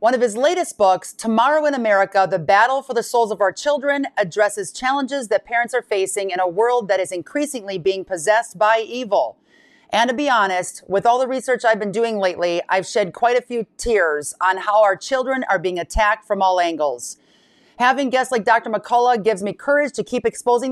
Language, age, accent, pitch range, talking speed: English, 40-59, American, 195-260 Hz, 205 wpm